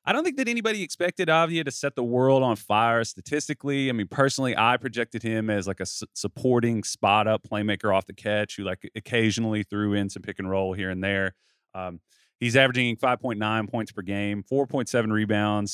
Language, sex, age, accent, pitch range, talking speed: English, male, 30-49, American, 105-130 Hz, 190 wpm